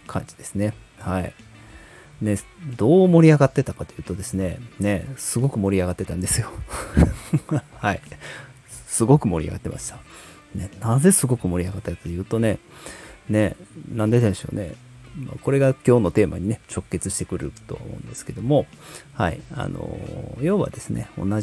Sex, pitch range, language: male, 95-125 Hz, Japanese